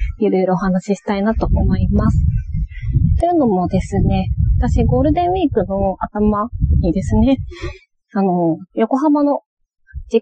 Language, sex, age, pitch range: Japanese, female, 20-39, 190-290 Hz